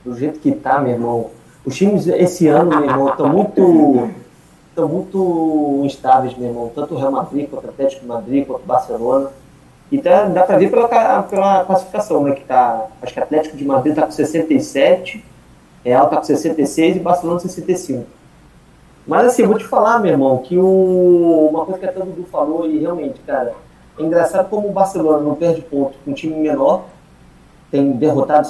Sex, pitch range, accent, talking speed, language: male, 140-180 Hz, Brazilian, 190 wpm, Portuguese